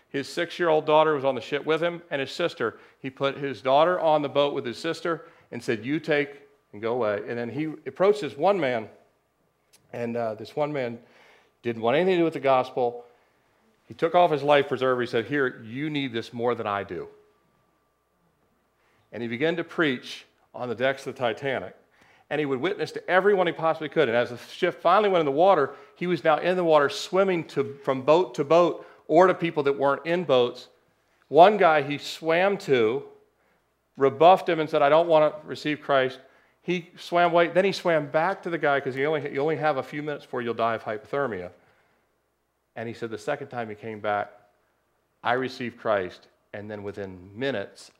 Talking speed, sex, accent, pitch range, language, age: 210 wpm, male, American, 120-165 Hz, English, 40-59